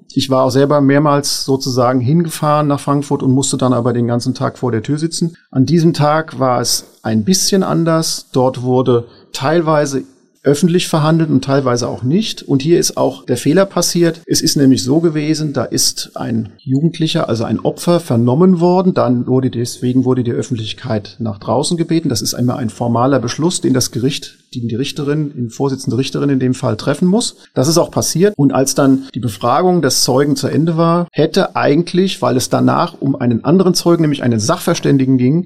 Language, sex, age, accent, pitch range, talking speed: German, male, 40-59, German, 125-165 Hz, 195 wpm